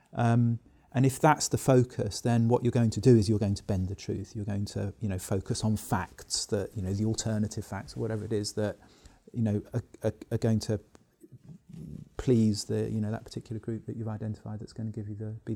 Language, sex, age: English, male, 30-49